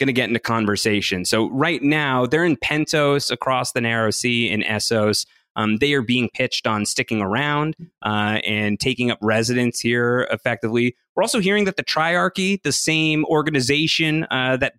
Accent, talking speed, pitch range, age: American, 175 wpm, 115-145 Hz, 30-49